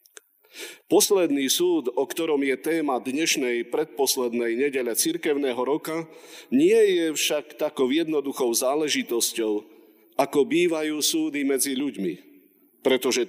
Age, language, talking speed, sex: 50-69, Slovak, 105 wpm, male